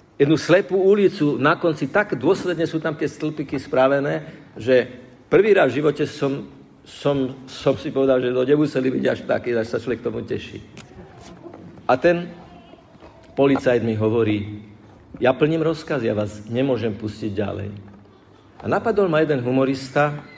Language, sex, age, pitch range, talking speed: Slovak, male, 50-69, 115-155 Hz, 150 wpm